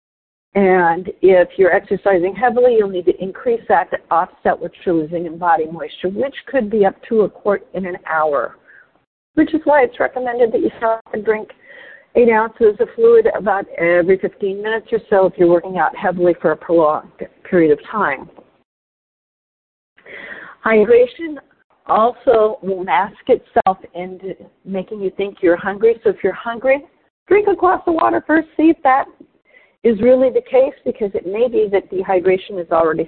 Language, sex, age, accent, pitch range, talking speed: English, female, 50-69, American, 185-265 Hz, 170 wpm